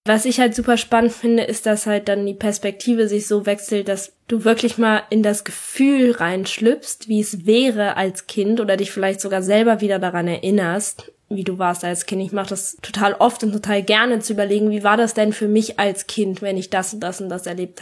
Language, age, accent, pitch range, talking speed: German, 10-29, German, 205-240 Hz, 225 wpm